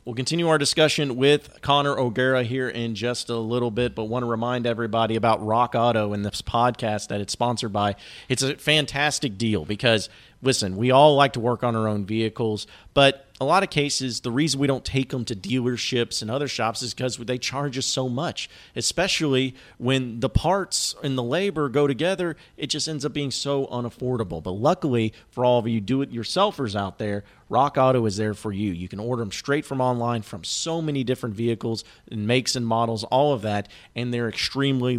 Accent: American